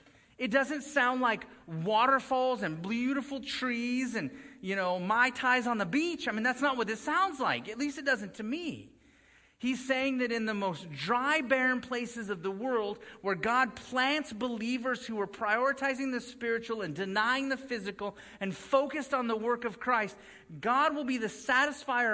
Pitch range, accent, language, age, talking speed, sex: 180-255 Hz, American, English, 40-59, 180 wpm, male